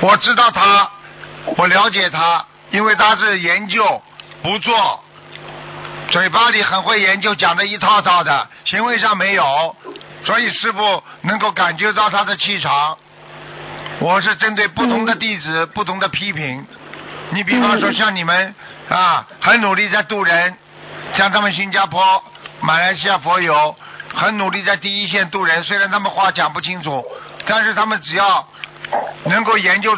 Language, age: Chinese, 50-69